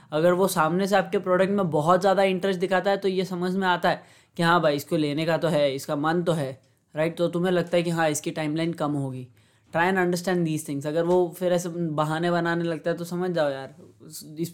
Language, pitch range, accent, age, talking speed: Hindi, 150-175 Hz, native, 20-39, 245 wpm